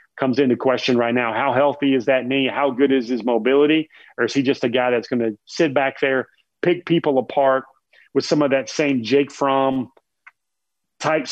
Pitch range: 120-145 Hz